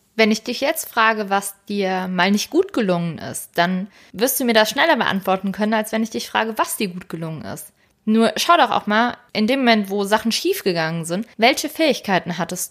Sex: female